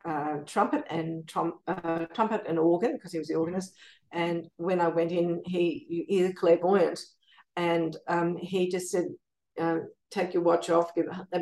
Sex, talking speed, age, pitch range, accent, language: female, 175 wpm, 50-69, 165-195 Hz, Australian, English